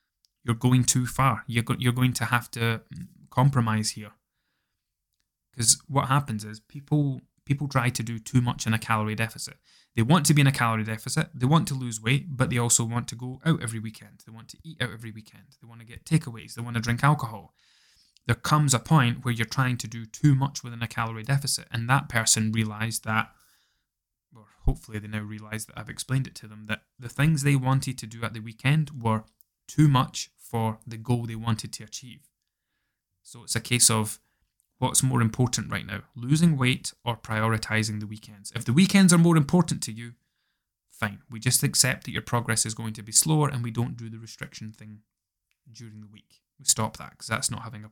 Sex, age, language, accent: male, 10-29, English, British